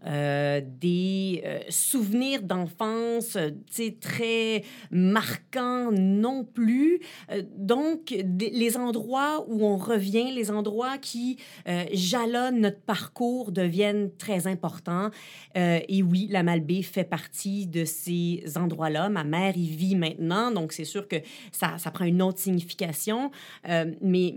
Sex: female